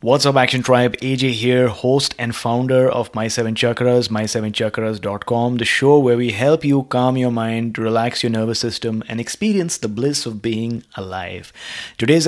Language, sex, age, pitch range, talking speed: English, male, 20-39, 110-135 Hz, 160 wpm